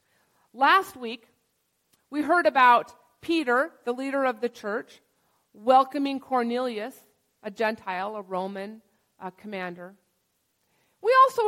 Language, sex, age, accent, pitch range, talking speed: English, female, 40-59, American, 210-310 Hz, 105 wpm